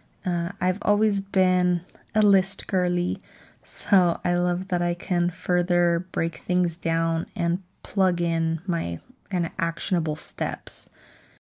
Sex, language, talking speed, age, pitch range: female, English, 130 wpm, 20-39, 175-200 Hz